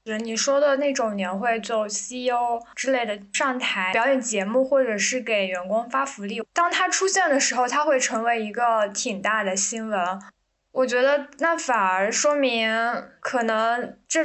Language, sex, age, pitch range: Chinese, female, 10-29, 215-270 Hz